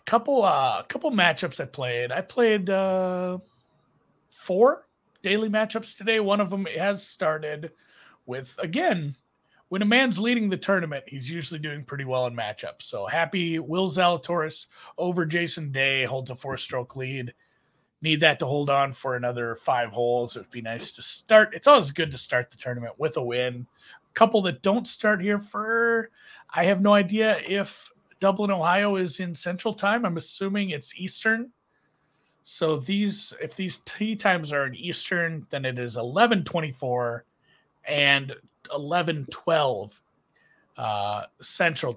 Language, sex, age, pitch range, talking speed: English, male, 30-49, 135-200 Hz, 155 wpm